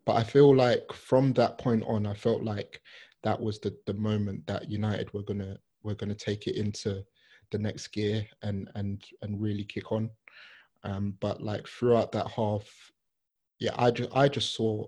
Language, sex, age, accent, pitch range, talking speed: English, male, 20-39, British, 105-115 Hz, 185 wpm